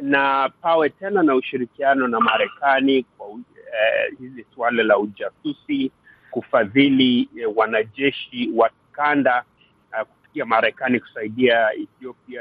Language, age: Swahili, 50-69